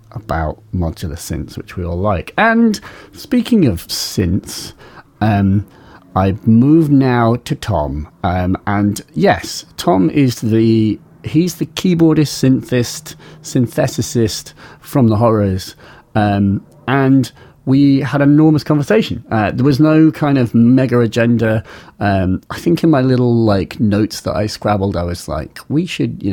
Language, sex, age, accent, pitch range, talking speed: English, male, 40-59, British, 100-140 Hz, 145 wpm